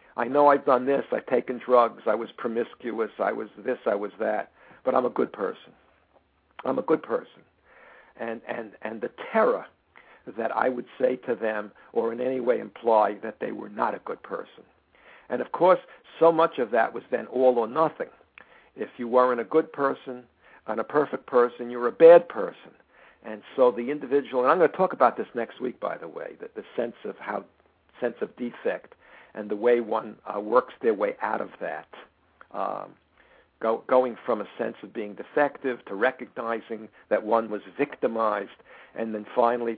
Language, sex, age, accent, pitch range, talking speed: English, male, 60-79, American, 110-130 Hz, 195 wpm